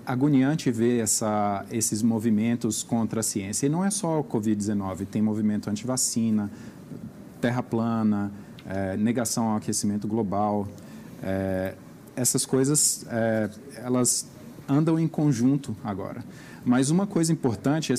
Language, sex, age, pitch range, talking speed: Portuguese, male, 40-59, 110-135 Hz, 125 wpm